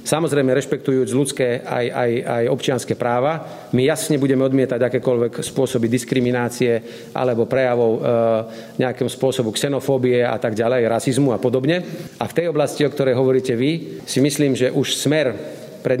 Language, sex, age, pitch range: Slovak, male, 40-59, 120-135 Hz